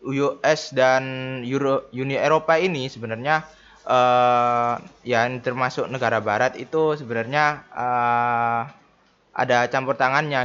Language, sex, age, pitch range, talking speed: Indonesian, male, 20-39, 115-135 Hz, 110 wpm